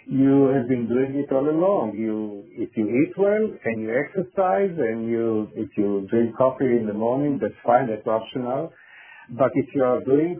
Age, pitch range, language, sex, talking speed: 50-69, 115-145 Hz, English, male, 190 wpm